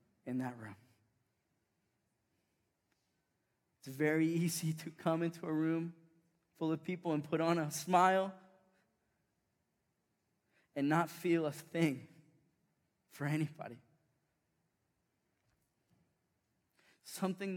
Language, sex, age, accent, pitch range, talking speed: English, male, 20-39, American, 155-230 Hz, 90 wpm